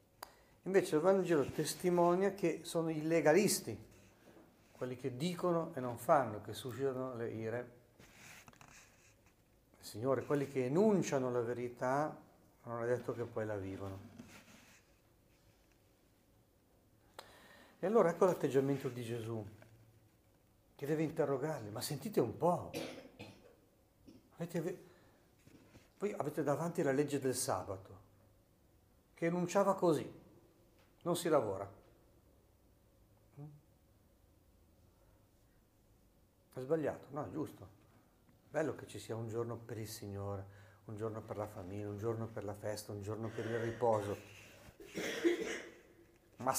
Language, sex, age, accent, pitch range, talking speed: Italian, male, 50-69, native, 105-155 Hz, 115 wpm